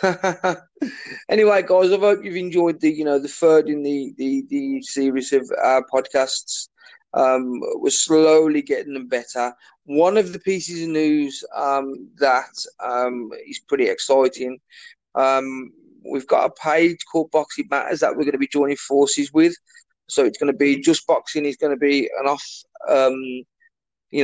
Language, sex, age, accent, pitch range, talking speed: English, male, 20-39, British, 135-170 Hz, 170 wpm